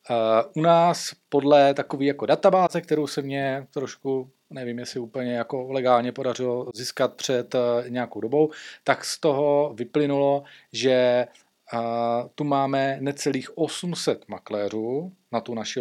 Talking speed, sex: 135 wpm, male